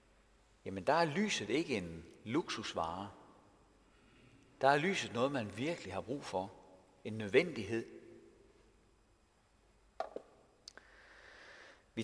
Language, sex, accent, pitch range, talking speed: Danish, male, native, 105-165 Hz, 95 wpm